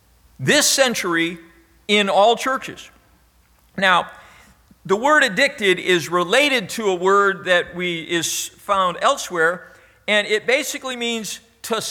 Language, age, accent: English, 50-69, American